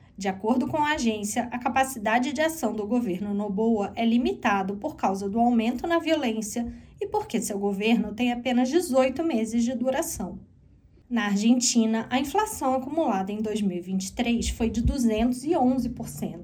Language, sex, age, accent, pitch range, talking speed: Portuguese, female, 20-39, Brazilian, 200-255 Hz, 135 wpm